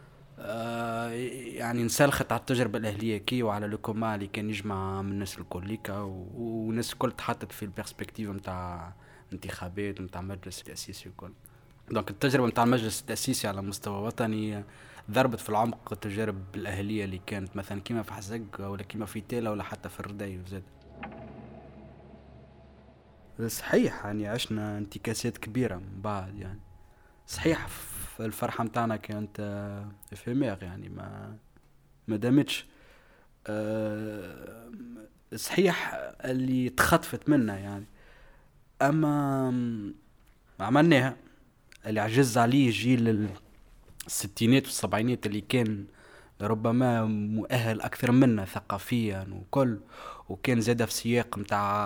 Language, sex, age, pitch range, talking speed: French, male, 20-39, 100-120 Hz, 115 wpm